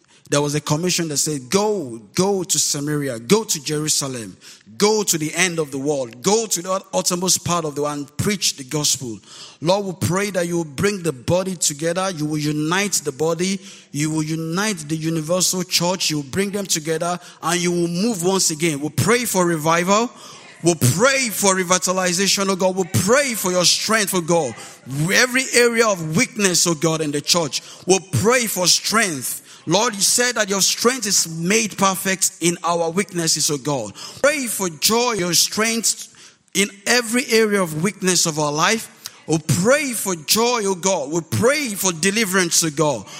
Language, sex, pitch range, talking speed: English, male, 165-210 Hz, 190 wpm